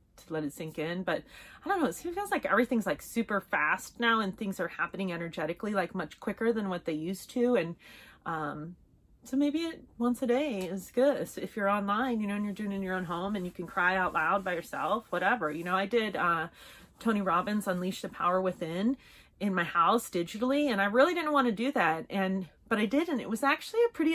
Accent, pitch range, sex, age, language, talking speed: American, 185-255 Hz, female, 30-49, English, 245 wpm